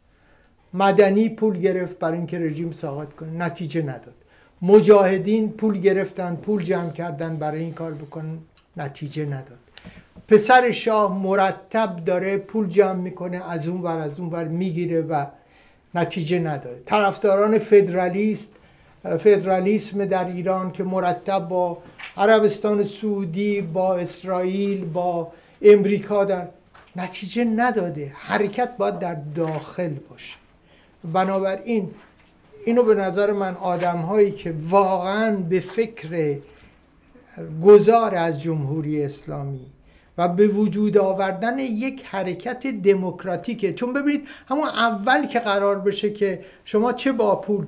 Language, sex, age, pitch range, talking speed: Persian, male, 60-79, 175-210 Hz, 120 wpm